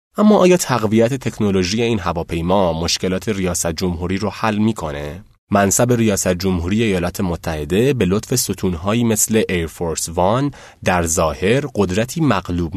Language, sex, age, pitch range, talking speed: Persian, male, 30-49, 90-115 Hz, 130 wpm